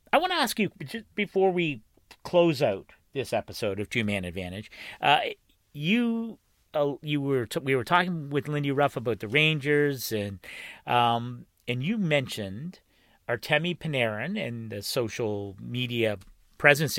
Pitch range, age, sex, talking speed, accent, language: 115-155 Hz, 40-59, male, 150 wpm, American, English